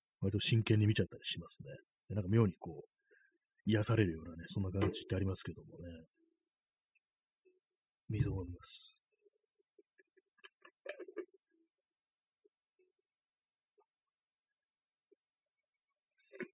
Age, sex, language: 30-49, male, Japanese